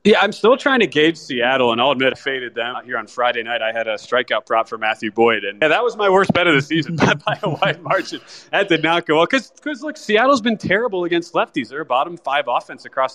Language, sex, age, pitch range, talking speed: English, male, 20-39, 120-155 Hz, 255 wpm